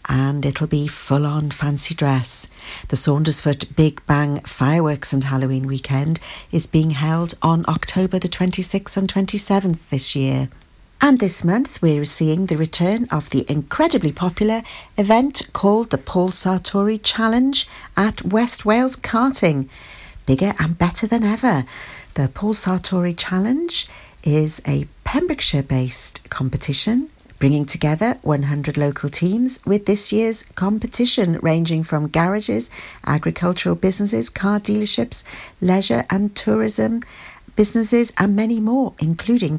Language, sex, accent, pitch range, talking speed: English, female, British, 145-210 Hz, 125 wpm